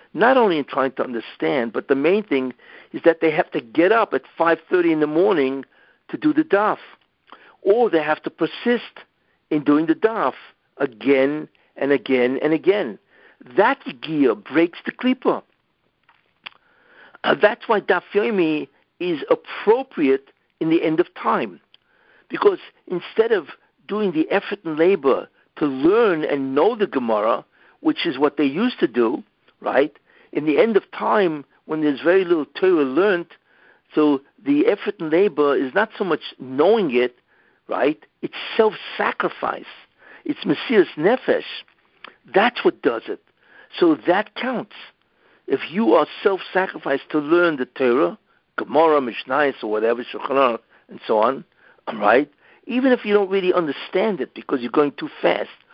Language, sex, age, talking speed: English, male, 60-79, 155 wpm